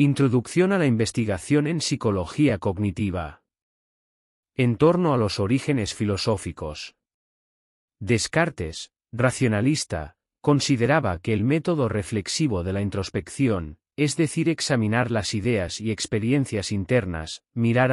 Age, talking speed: 30-49, 105 wpm